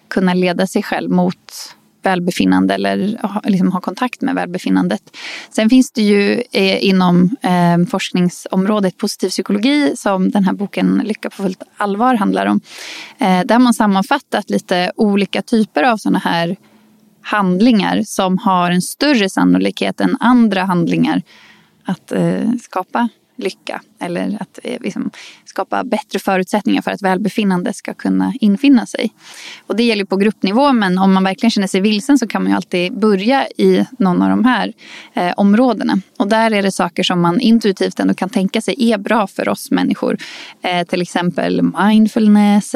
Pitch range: 185-225 Hz